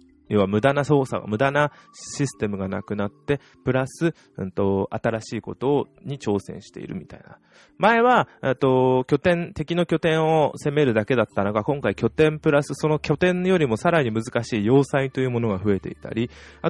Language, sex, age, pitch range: Japanese, male, 20-39, 95-145 Hz